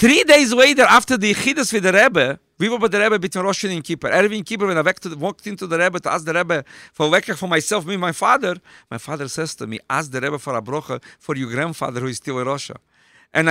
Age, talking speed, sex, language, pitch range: 50-69, 260 wpm, male, English, 150-205 Hz